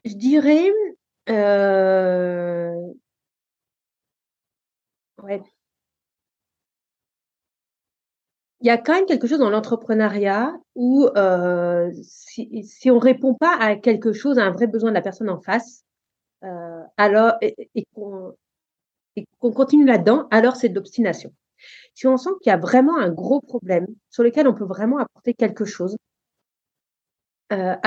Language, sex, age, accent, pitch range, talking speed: French, female, 40-59, French, 195-255 Hz, 140 wpm